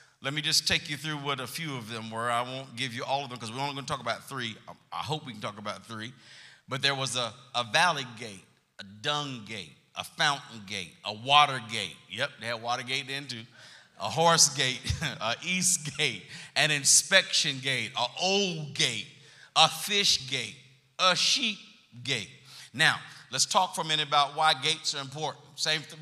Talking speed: 205 wpm